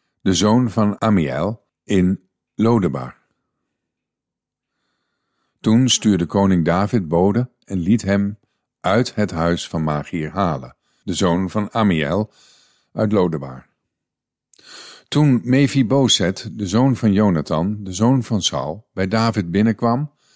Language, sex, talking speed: Dutch, male, 115 wpm